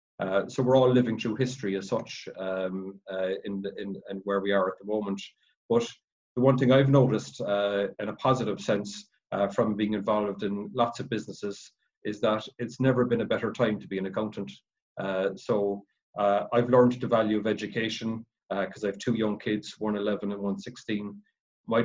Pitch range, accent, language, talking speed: 100-120 Hz, Irish, English, 205 wpm